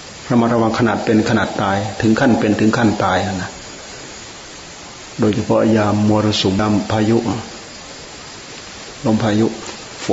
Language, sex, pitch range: Thai, male, 105-115 Hz